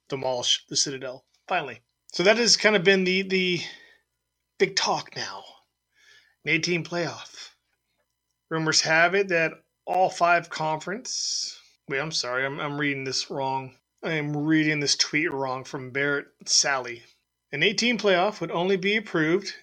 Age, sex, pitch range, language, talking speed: 30-49, male, 145-200 Hz, English, 150 wpm